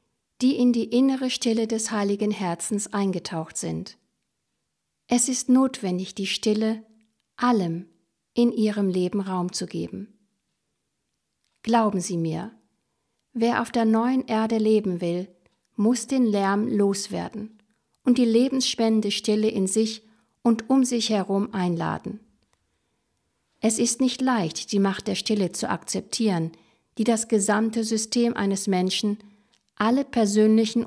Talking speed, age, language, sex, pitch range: 125 wpm, 50-69, German, female, 195-230 Hz